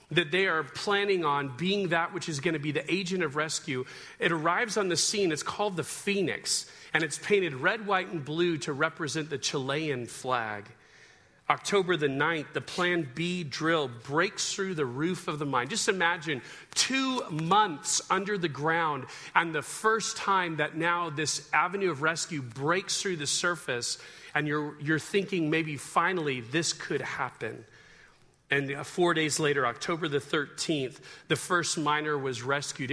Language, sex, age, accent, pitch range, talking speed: English, male, 40-59, American, 150-200 Hz, 170 wpm